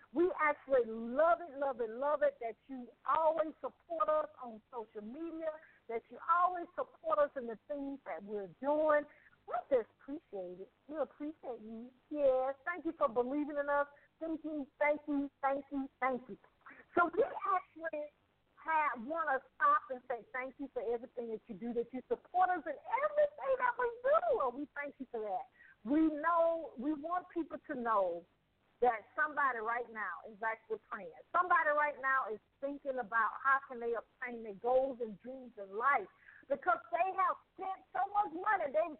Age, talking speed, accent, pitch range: 50-69, 180 wpm, American, 235-330 Hz